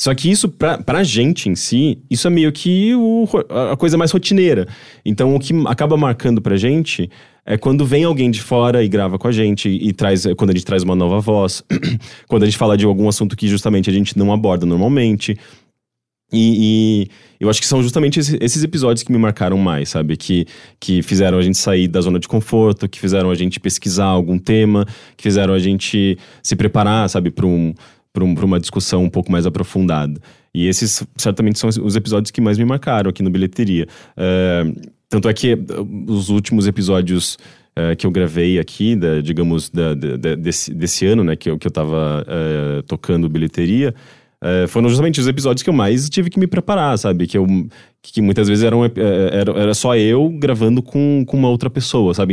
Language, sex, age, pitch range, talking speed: Portuguese, male, 20-39, 90-120 Hz, 205 wpm